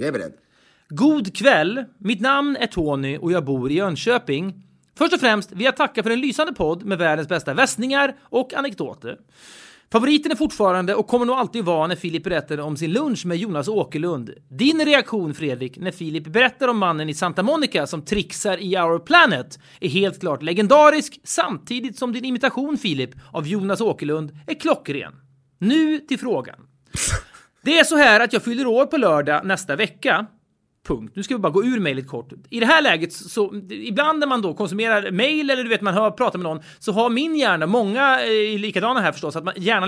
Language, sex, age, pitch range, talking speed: Swedish, male, 30-49, 170-255 Hz, 190 wpm